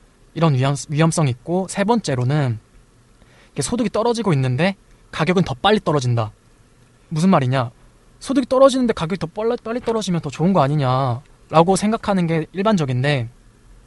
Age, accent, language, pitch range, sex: 20-39, native, Korean, 135-190 Hz, male